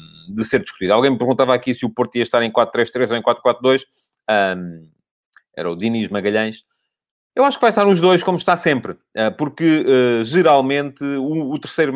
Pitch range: 110-135 Hz